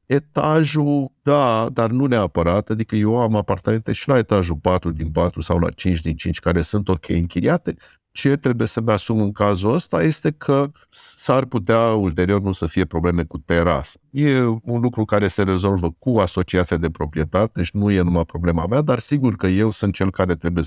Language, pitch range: Romanian, 85-115 Hz